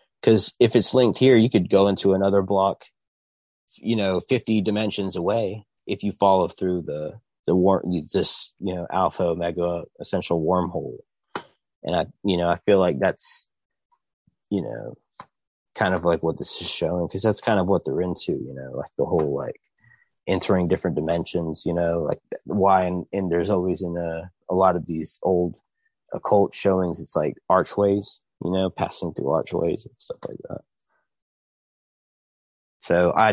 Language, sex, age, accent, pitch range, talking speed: English, male, 20-39, American, 90-110 Hz, 170 wpm